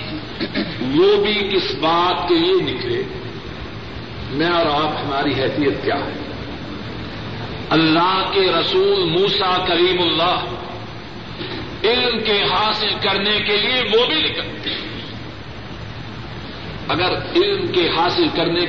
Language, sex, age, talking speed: Urdu, male, 50-69, 110 wpm